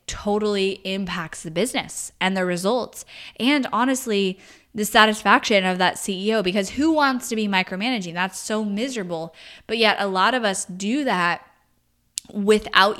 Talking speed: 150 wpm